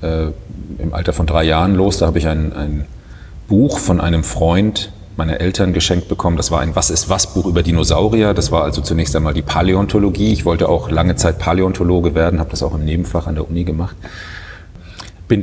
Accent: German